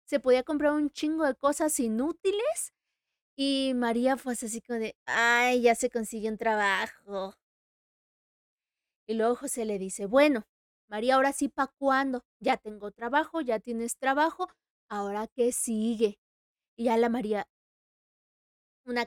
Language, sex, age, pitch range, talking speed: Spanish, female, 20-39, 225-280 Hz, 140 wpm